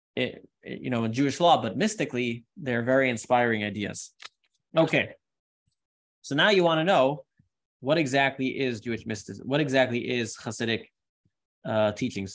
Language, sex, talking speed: English, male, 140 wpm